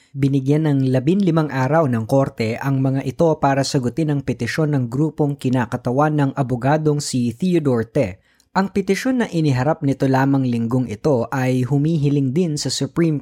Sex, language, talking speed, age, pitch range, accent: female, Filipino, 160 wpm, 20-39, 125-150 Hz, native